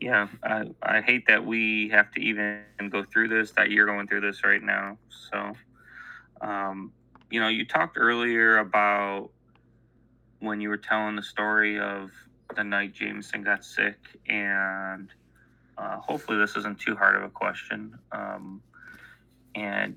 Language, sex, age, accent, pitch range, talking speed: English, male, 20-39, American, 105-120 Hz, 155 wpm